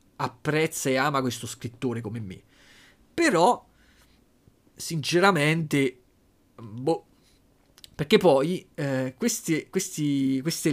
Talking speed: 90 wpm